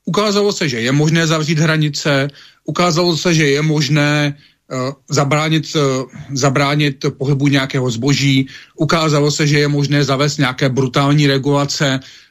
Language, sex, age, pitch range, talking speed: Slovak, male, 40-59, 135-155 Hz, 125 wpm